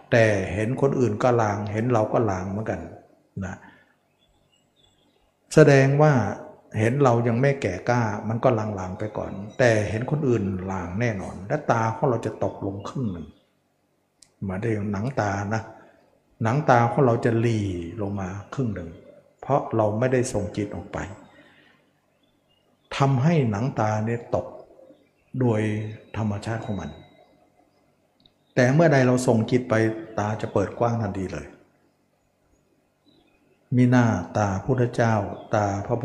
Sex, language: male, Thai